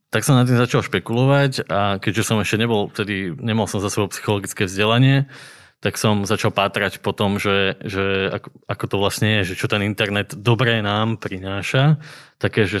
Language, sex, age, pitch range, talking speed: Slovak, male, 20-39, 100-115 Hz, 185 wpm